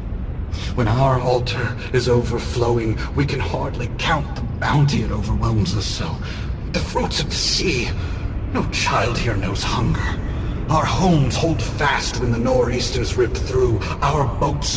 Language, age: English, 40-59